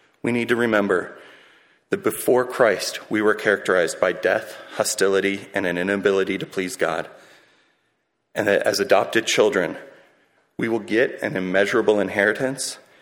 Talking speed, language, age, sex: 140 wpm, English, 30-49, male